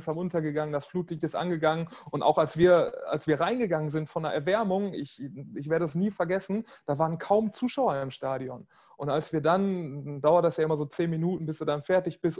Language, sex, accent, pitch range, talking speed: German, male, German, 150-175 Hz, 220 wpm